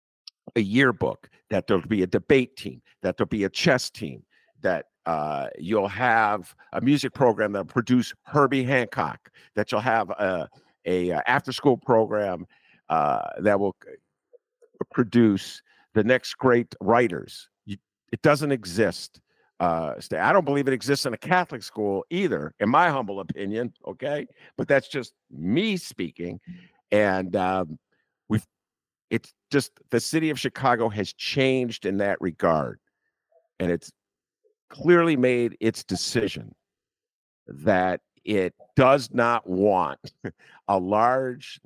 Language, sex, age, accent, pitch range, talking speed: English, male, 50-69, American, 105-145 Hz, 135 wpm